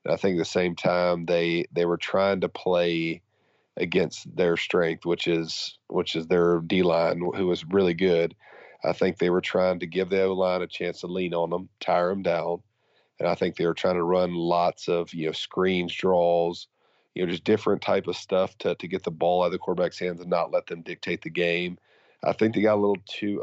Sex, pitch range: male, 85-95 Hz